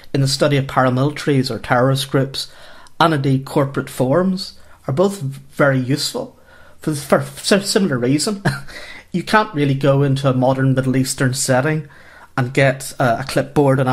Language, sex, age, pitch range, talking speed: English, male, 30-49, 130-150 Hz, 150 wpm